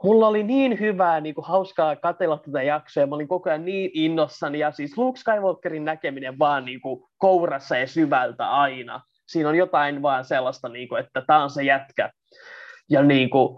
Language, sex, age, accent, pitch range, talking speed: Finnish, male, 20-39, native, 145-180 Hz, 170 wpm